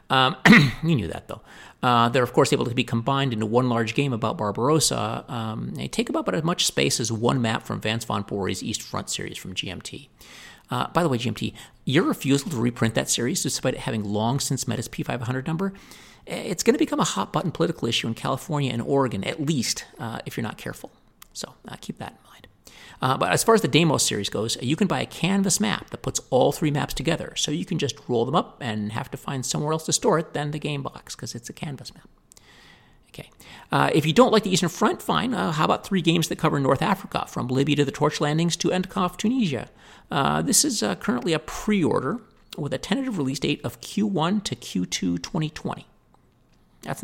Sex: male